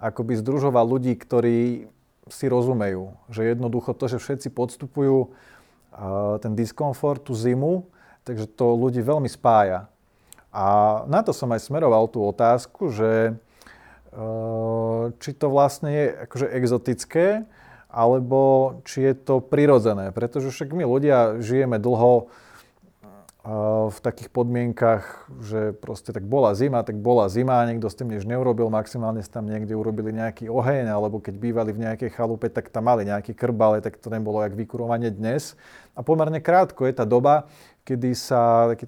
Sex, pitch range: male, 110-130 Hz